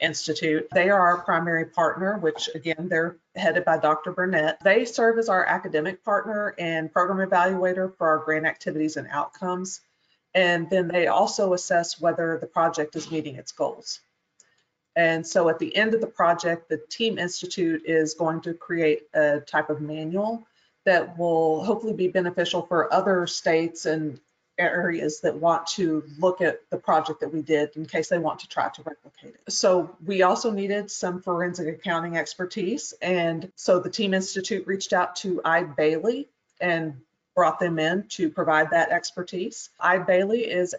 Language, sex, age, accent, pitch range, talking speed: English, female, 40-59, American, 160-190 Hz, 170 wpm